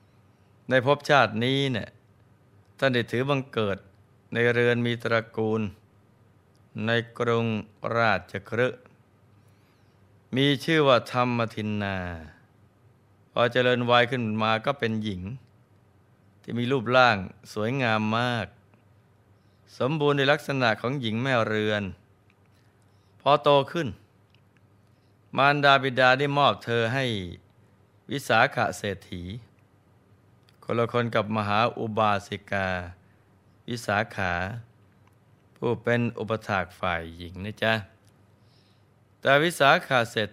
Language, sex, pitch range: Thai, male, 100-120 Hz